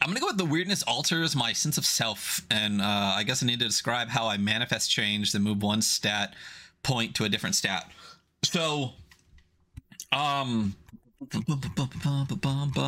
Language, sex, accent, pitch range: English, male, American, 95-125 Hz